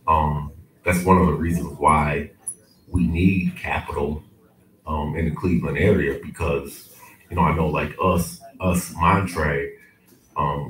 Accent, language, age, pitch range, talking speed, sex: American, English, 40-59, 75-90 Hz, 140 wpm, male